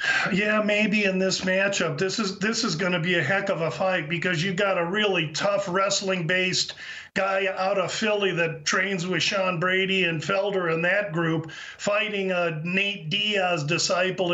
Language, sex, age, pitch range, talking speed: English, male, 40-59, 180-205 Hz, 180 wpm